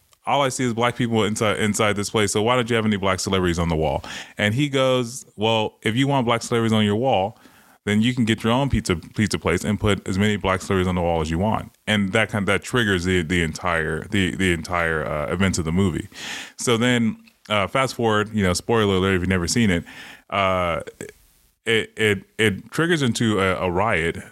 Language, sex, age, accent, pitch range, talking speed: English, male, 20-39, American, 90-110 Hz, 230 wpm